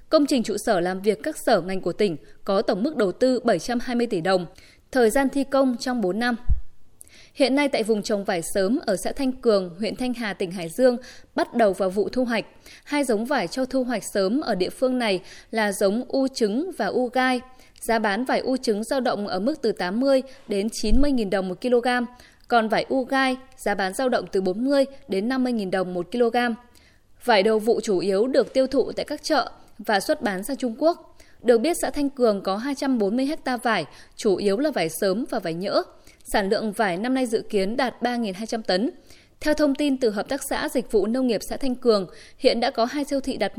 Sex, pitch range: female, 205-265 Hz